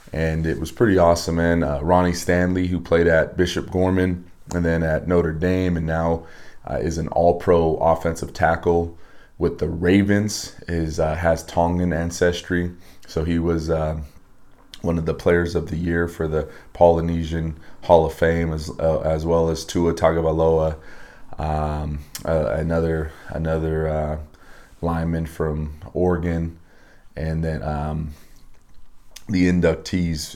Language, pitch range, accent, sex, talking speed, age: English, 80-85 Hz, American, male, 140 wpm, 30-49